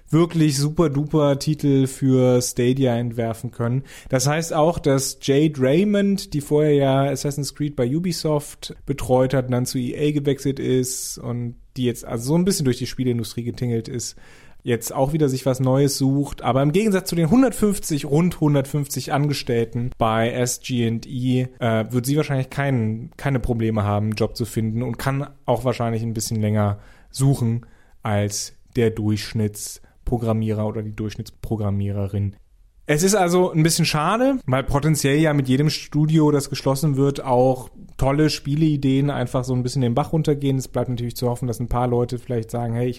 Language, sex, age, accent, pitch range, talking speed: German, male, 30-49, German, 120-150 Hz, 175 wpm